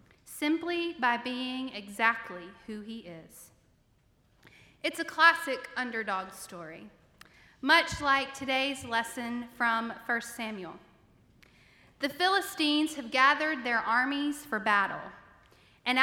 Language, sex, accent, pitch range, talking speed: English, female, American, 230-300 Hz, 105 wpm